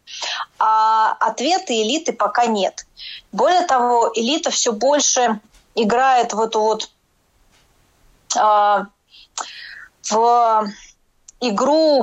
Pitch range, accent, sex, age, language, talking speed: 215-265 Hz, native, female, 20-39, Russian, 80 wpm